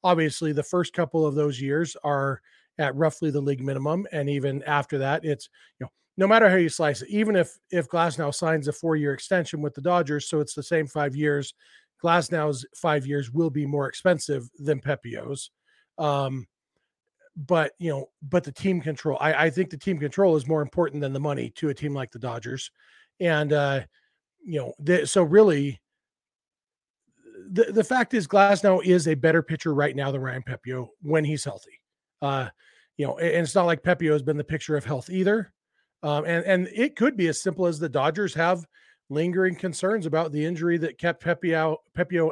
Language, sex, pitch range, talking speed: English, male, 145-175 Hz, 200 wpm